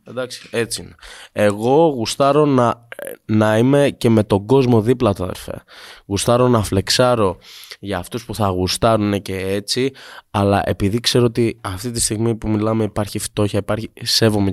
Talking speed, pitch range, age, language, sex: 155 wpm, 100-120 Hz, 20-39, Greek, male